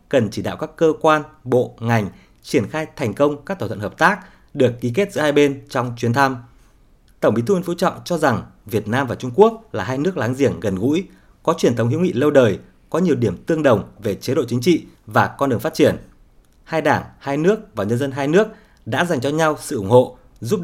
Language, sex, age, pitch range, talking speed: Vietnamese, male, 20-39, 120-175 Hz, 245 wpm